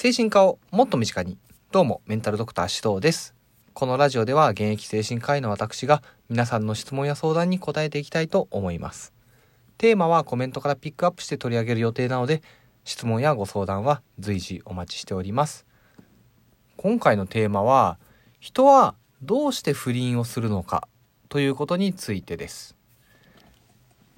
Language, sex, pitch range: Japanese, male, 105-150 Hz